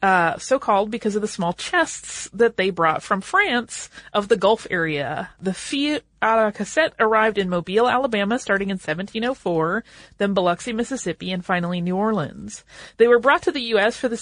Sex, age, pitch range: female, 30-49, 180-235 Hz